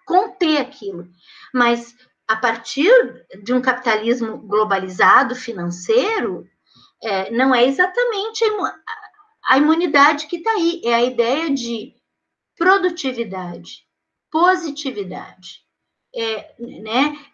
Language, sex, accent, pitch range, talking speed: Portuguese, female, Brazilian, 250-330 Hz, 85 wpm